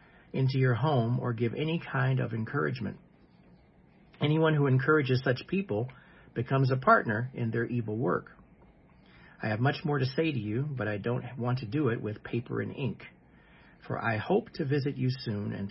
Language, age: English, 50-69